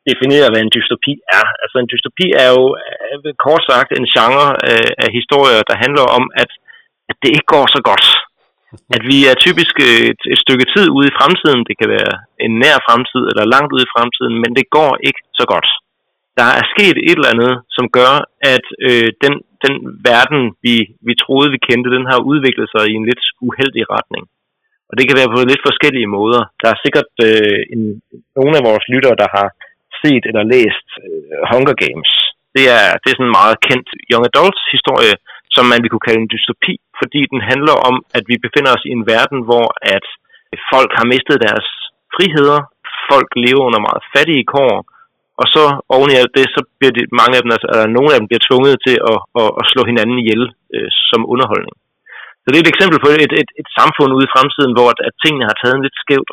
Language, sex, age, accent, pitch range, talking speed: Danish, male, 30-49, native, 120-140 Hz, 210 wpm